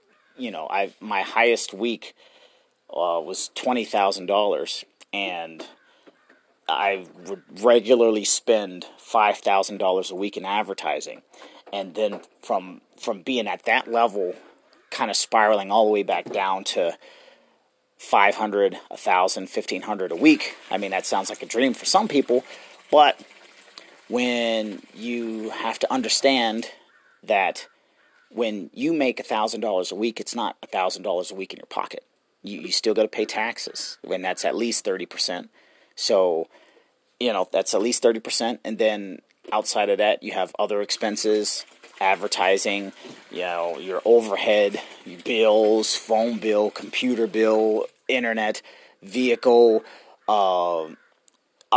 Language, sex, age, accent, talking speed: English, male, 40-59, American, 140 wpm